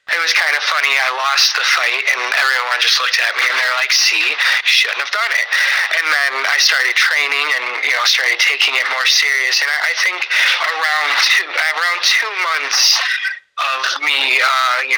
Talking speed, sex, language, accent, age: 195 wpm, male, English, American, 20-39